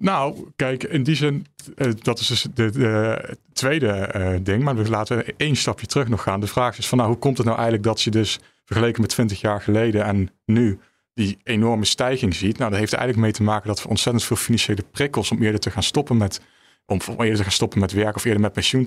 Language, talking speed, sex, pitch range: Dutch, 240 wpm, male, 100-120 Hz